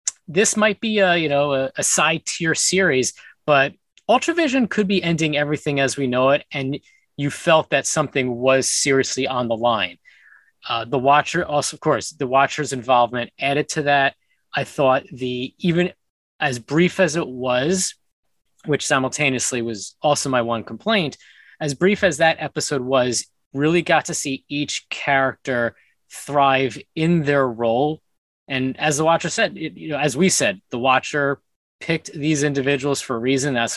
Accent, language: American, English